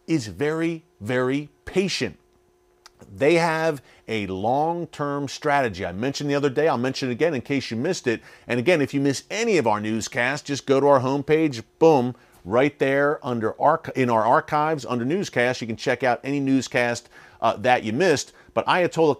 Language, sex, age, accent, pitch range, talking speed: English, male, 40-59, American, 110-140 Hz, 185 wpm